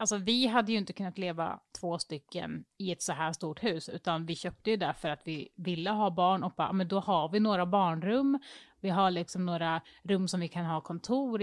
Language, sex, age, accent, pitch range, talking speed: Swedish, female, 30-49, native, 175-225 Hz, 230 wpm